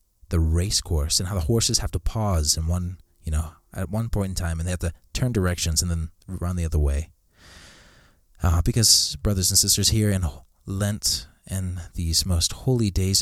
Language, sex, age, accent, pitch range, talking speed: English, male, 30-49, American, 80-105 Hz, 205 wpm